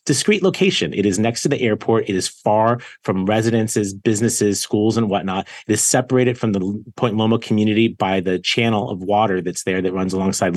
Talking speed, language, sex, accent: 200 wpm, English, male, American